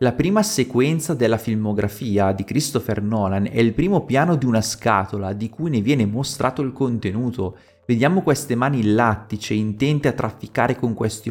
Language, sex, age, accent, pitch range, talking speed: Italian, male, 30-49, native, 110-145 Hz, 165 wpm